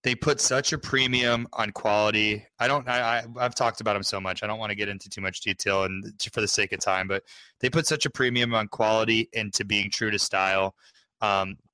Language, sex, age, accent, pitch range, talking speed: English, male, 20-39, American, 100-130 Hz, 235 wpm